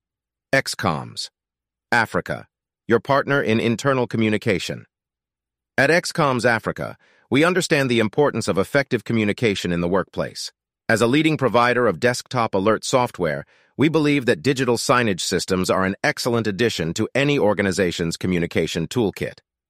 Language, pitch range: English, 95-130 Hz